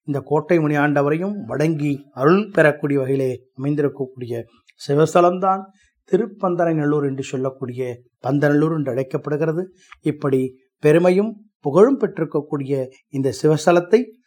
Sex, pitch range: male, 145-195 Hz